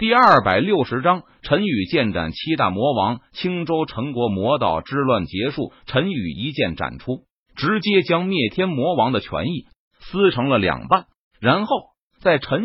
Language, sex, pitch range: Chinese, male, 120-190 Hz